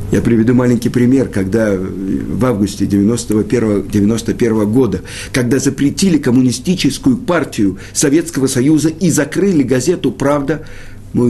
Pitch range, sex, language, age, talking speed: 100-155 Hz, male, Russian, 50-69, 105 wpm